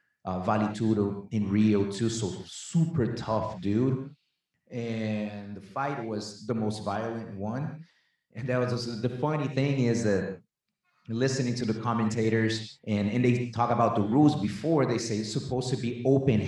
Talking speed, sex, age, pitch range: 165 wpm, male, 30-49, 105-125 Hz